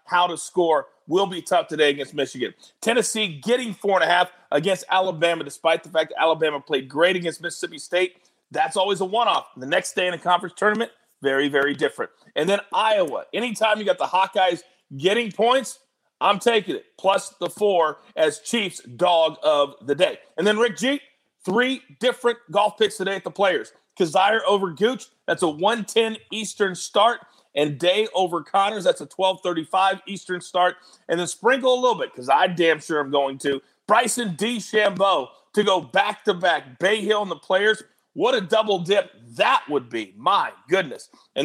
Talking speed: 185 wpm